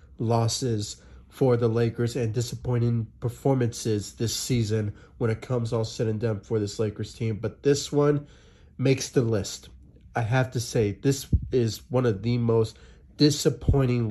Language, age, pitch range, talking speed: English, 30-49, 105-130 Hz, 155 wpm